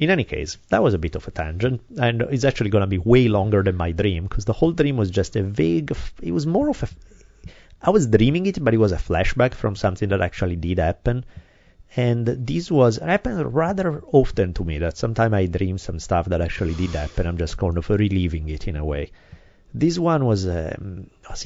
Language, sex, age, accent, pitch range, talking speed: English, male, 30-49, Italian, 85-115 Hz, 235 wpm